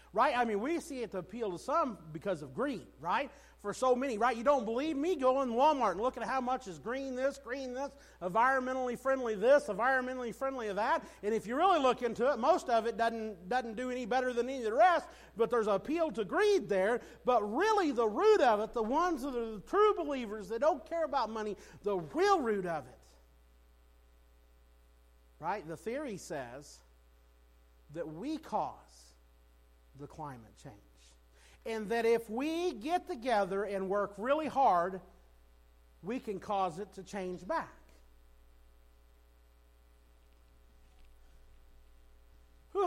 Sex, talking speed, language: male, 170 wpm, English